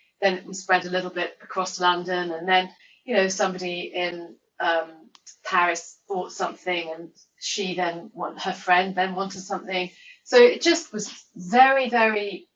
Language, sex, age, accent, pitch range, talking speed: English, female, 30-49, British, 170-200 Hz, 160 wpm